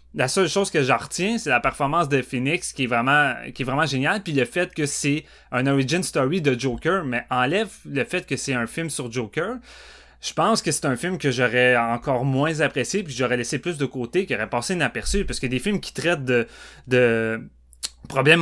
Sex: male